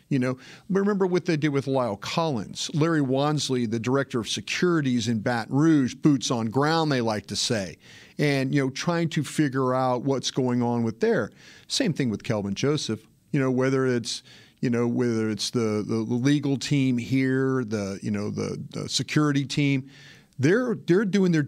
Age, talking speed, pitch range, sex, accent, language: 40-59, 185 wpm, 125-155 Hz, male, American, English